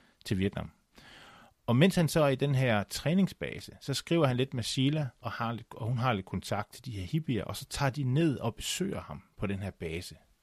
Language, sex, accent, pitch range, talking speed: Danish, male, native, 95-125 Hz, 235 wpm